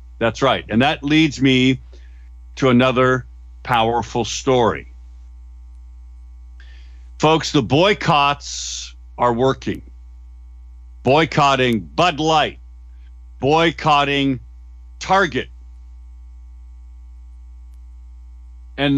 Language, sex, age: English, male, 50-69